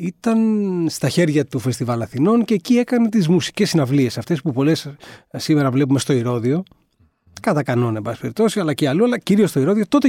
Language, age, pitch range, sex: Greek, 40-59, 130-185 Hz, male